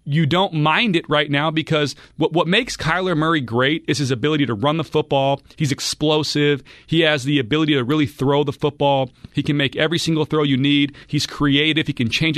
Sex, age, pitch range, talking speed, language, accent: male, 40-59, 140-160 Hz, 215 wpm, English, American